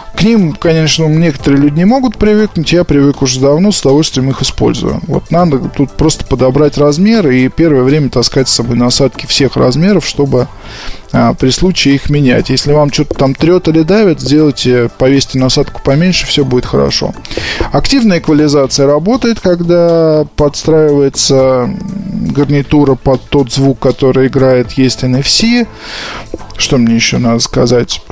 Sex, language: male, Russian